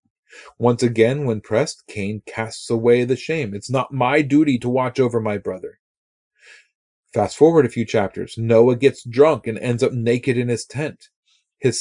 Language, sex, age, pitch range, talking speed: English, male, 30-49, 100-130 Hz, 175 wpm